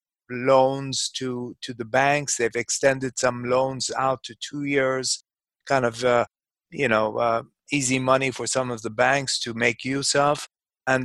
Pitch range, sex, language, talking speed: 125-145 Hz, male, English, 170 wpm